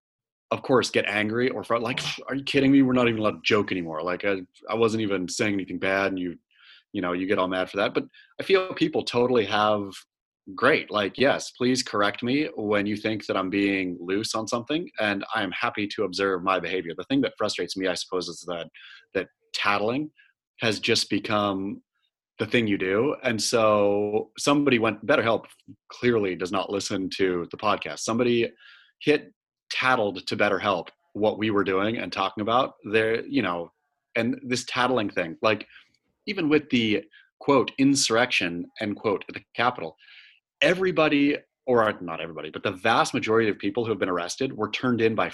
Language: English